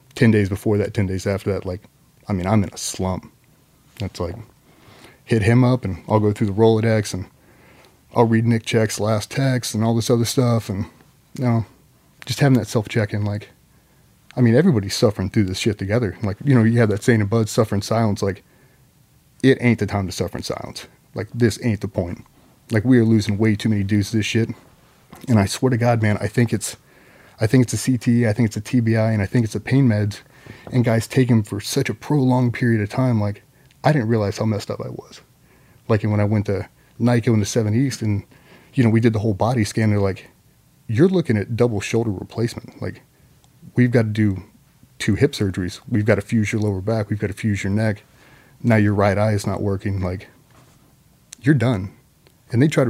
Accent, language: American, English